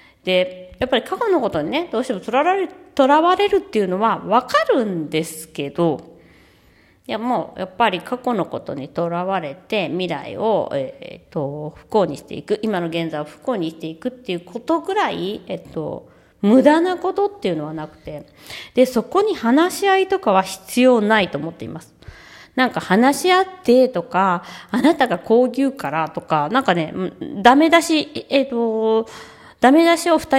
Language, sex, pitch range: Japanese, female, 170-280 Hz